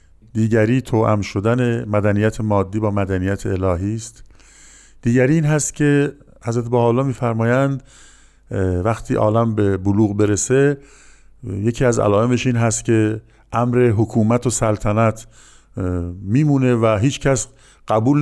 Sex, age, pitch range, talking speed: male, 50-69, 100-120 Hz, 120 wpm